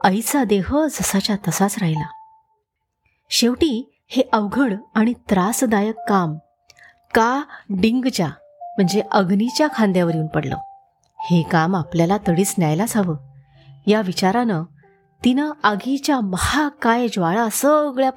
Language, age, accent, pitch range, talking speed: Marathi, 30-49, native, 175-240 Hz, 105 wpm